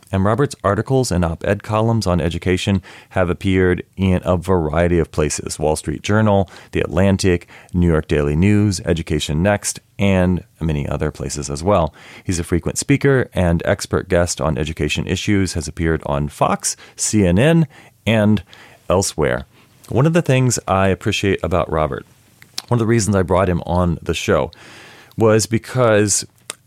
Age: 40-59